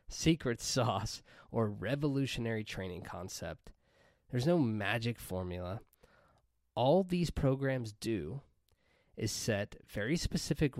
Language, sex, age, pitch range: English, male, 20-39, 100-130 Hz